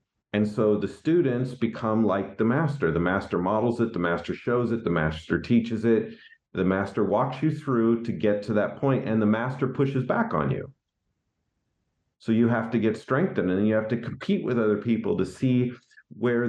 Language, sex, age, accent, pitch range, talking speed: English, male, 40-59, American, 95-120 Hz, 195 wpm